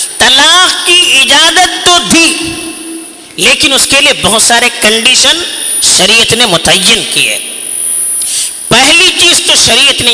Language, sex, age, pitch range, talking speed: Urdu, female, 50-69, 235-340 Hz, 125 wpm